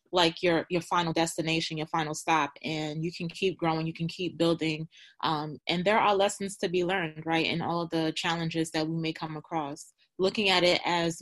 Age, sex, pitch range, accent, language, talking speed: 20-39, female, 165-185 Hz, American, English, 215 wpm